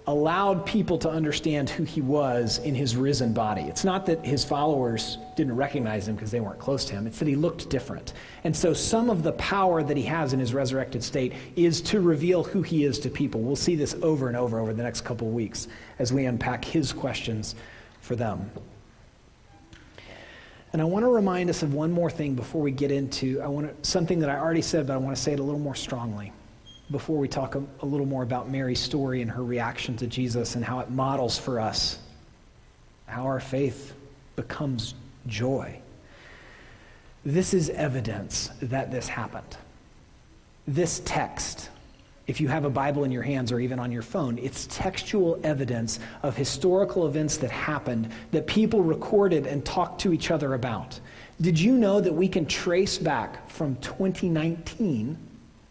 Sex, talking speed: male, 185 wpm